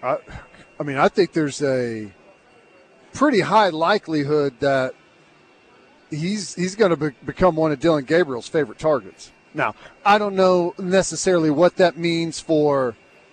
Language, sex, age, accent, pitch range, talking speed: English, male, 40-59, American, 160-190 Hz, 145 wpm